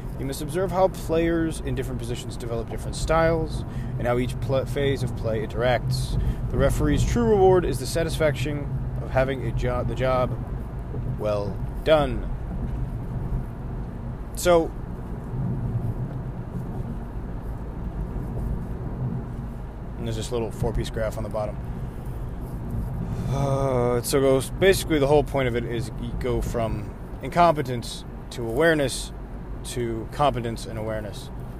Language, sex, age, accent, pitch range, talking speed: English, male, 30-49, American, 110-135 Hz, 120 wpm